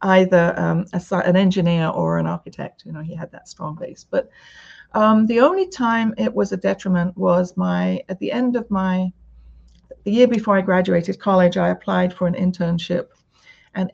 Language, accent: English, British